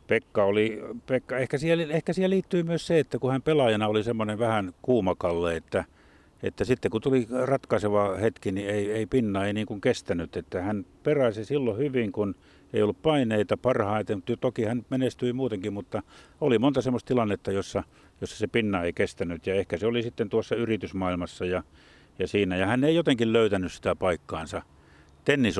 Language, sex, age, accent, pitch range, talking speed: Finnish, male, 50-69, native, 90-115 Hz, 180 wpm